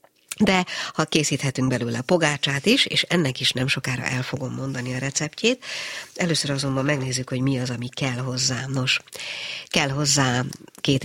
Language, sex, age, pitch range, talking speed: Hungarian, female, 60-79, 125-160 Hz, 165 wpm